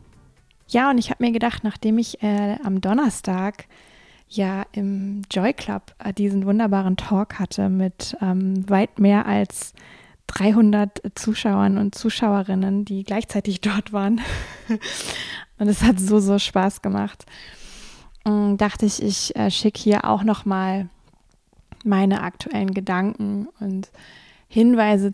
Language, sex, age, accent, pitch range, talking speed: German, female, 20-39, German, 195-215 Hz, 125 wpm